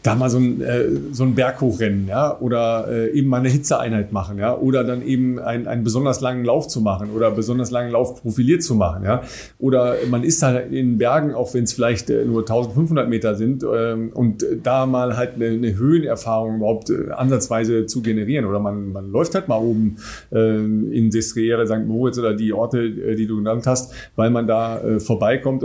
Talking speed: 190 wpm